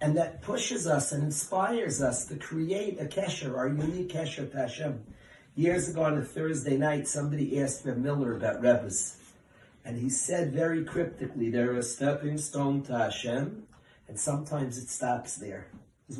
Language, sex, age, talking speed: English, male, 40-59, 165 wpm